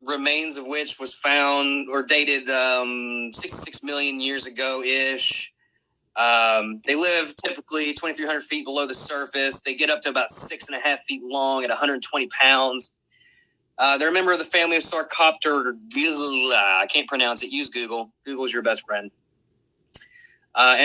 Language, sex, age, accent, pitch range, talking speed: English, male, 20-39, American, 125-160 Hz, 160 wpm